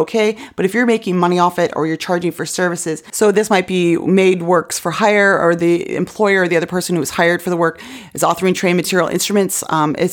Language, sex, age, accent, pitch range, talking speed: English, female, 30-49, American, 170-225 Hz, 245 wpm